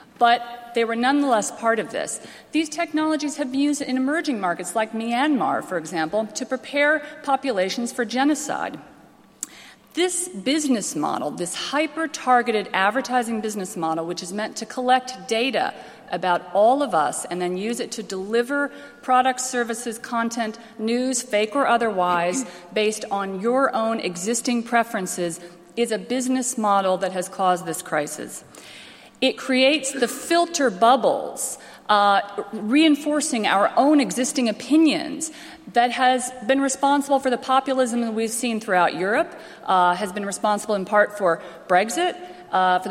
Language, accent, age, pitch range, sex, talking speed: English, American, 40-59, 205-270 Hz, female, 145 wpm